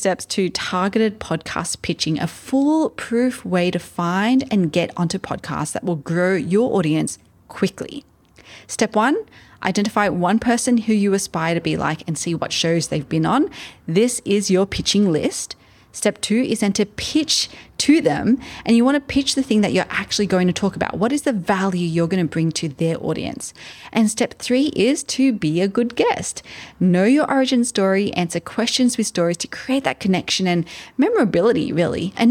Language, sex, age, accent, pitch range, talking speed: English, female, 30-49, Australian, 175-240 Hz, 190 wpm